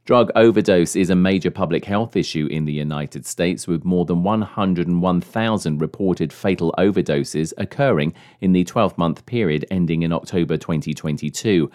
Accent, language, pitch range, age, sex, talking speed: British, English, 80-100 Hz, 40-59, male, 145 wpm